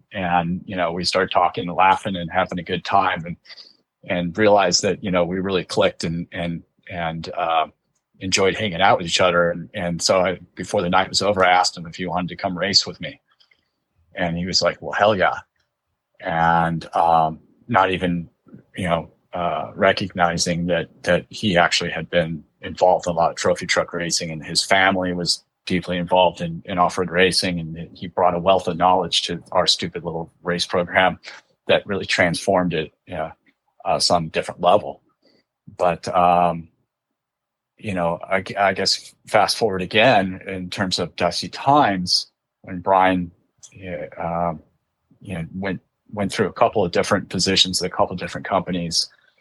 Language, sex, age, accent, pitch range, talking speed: English, male, 30-49, American, 85-95 Hz, 180 wpm